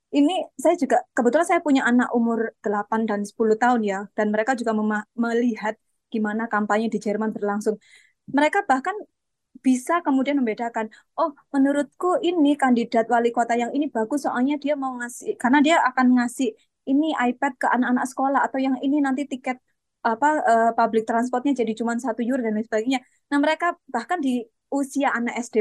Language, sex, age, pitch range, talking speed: Indonesian, female, 20-39, 220-270 Hz, 170 wpm